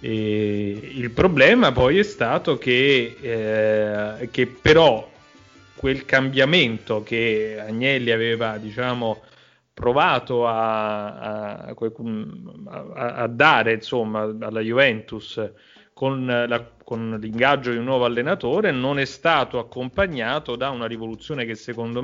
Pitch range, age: 115-135 Hz, 30-49